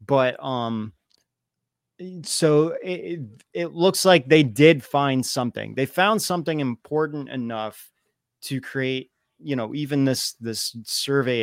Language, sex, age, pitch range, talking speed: English, male, 30-49, 115-145 Hz, 125 wpm